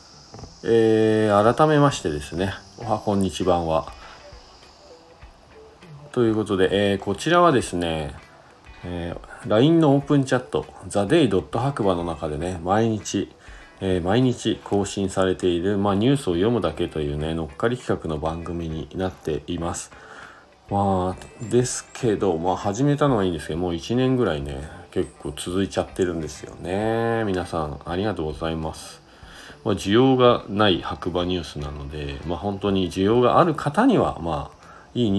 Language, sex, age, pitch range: Japanese, male, 40-59, 80-110 Hz